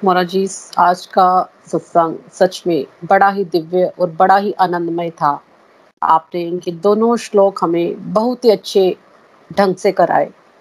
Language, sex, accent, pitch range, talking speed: Hindi, female, native, 185-225 Hz, 140 wpm